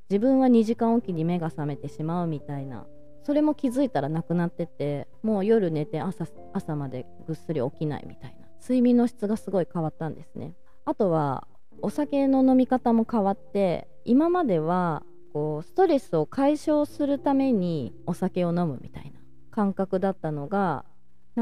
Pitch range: 150-230 Hz